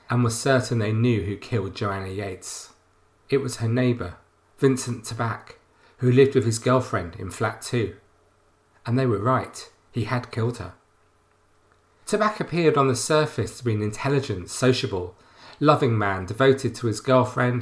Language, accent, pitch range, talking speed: English, British, 105-130 Hz, 160 wpm